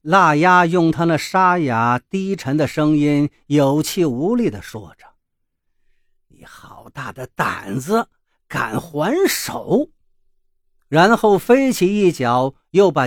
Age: 50-69